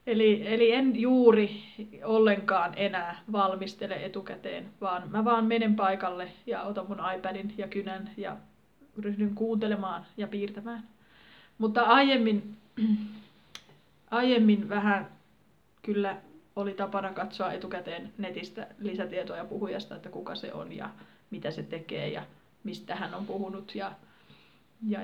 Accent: native